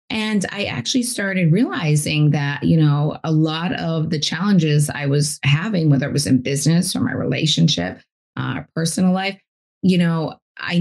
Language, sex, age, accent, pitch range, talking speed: English, female, 20-39, American, 145-170 Hz, 165 wpm